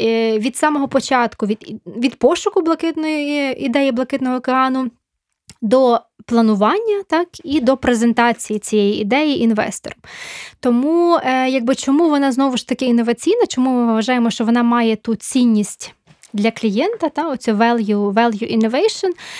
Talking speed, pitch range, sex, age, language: 130 wpm, 225-280 Hz, female, 20-39, Ukrainian